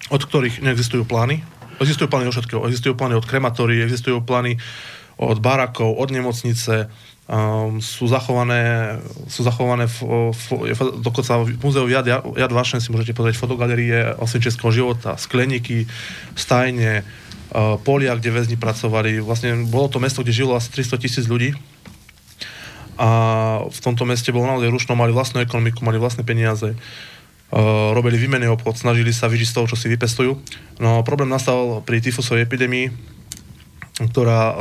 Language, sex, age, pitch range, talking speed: Slovak, male, 20-39, 115-125 Hz, 155 wpm